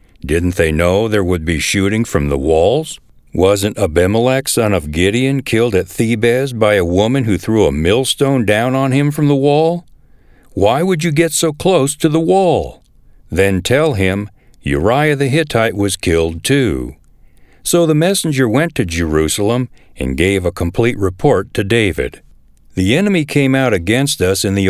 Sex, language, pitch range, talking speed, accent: male, English, 90-135 Hz, 170 wpm, American